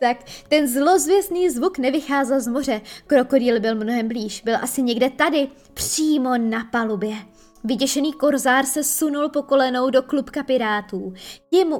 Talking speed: 140 wpm